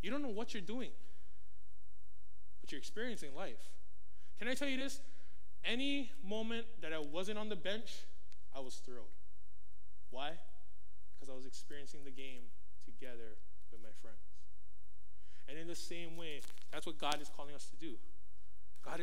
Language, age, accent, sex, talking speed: English, 20-39, American, male, 160 wpm